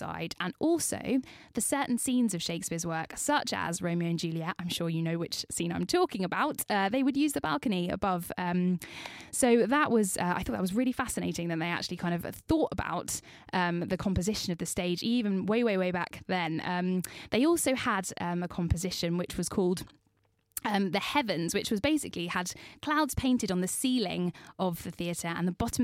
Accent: British